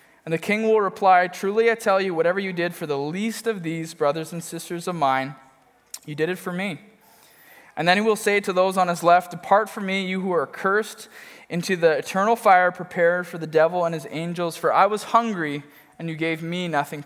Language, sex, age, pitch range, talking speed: English, male, 20-39, 155-195 Hz, 225 wpm